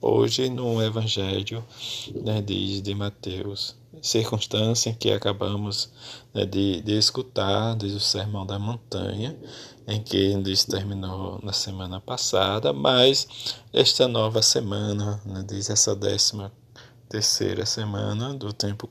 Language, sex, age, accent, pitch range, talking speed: Portuguese, male, 20-39, Brazilian, 100-115 Hz, 125 wpm